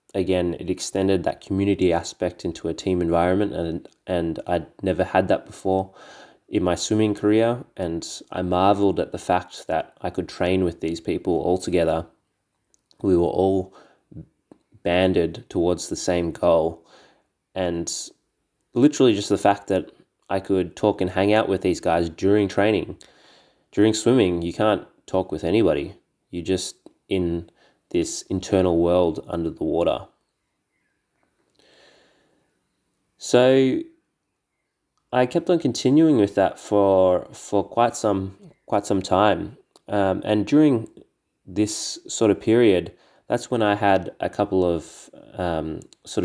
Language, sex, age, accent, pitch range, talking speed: English, male, 20-39, Australian, 90-105 Hz, 140 wpm